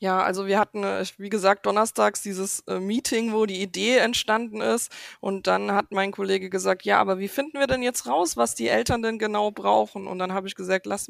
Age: 20-39